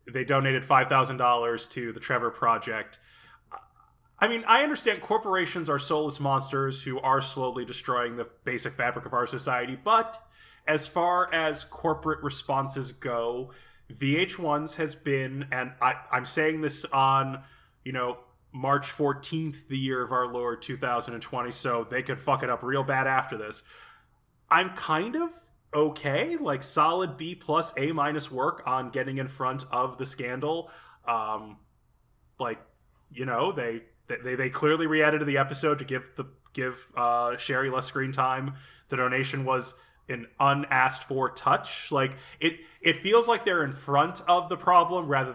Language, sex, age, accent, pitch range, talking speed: English, male, 20-39, American, 125-150 Hz, 155 wpm